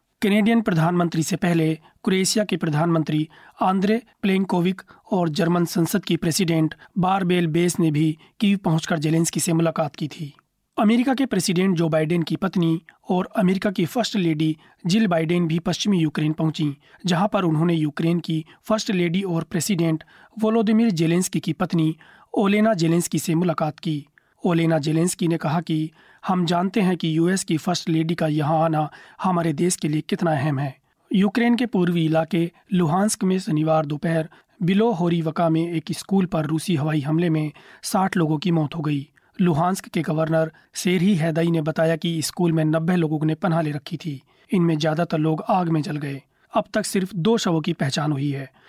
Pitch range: 160-190 Hz